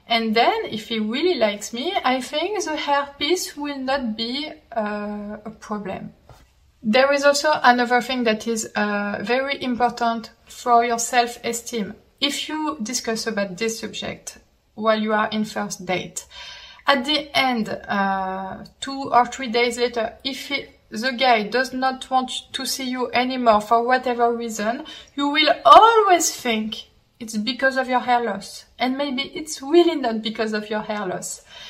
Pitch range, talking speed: 220-270 Hz, 160 wpm